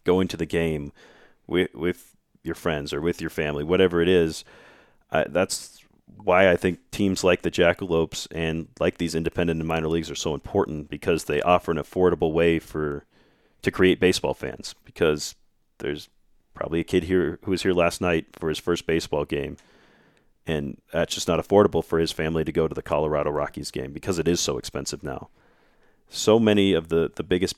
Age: 30-49